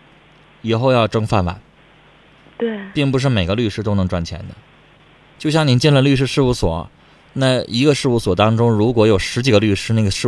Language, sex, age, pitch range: Chinese, male, 20-39, 100-140 Hz